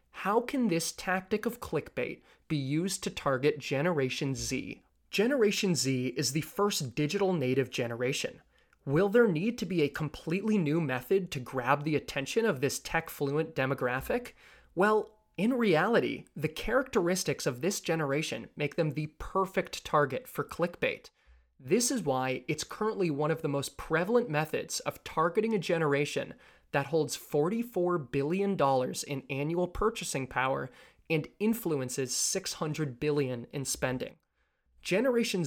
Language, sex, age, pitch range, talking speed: English, male, 20-39, 140-195 Hz, 140 wpm